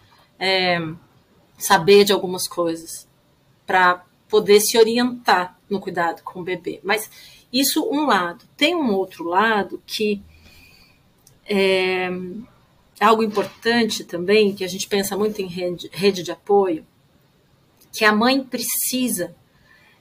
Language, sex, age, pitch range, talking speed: Portuguese, female, 40-59, 180-225 Hz, 120 wpm